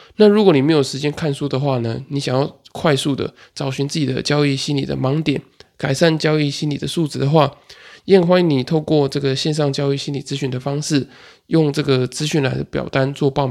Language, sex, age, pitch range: Chinese, male, 20-39, 135-155 Hz